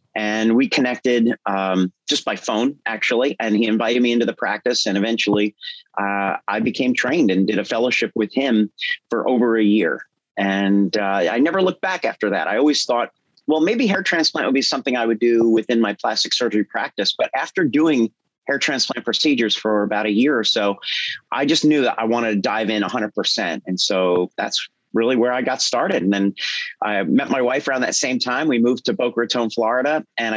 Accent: American